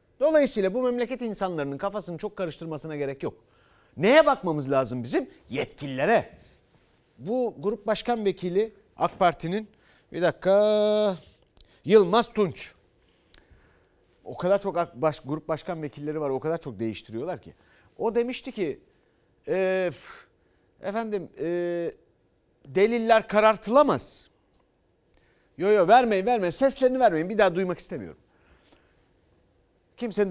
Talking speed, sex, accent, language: 105 wpm, male, native, Turkish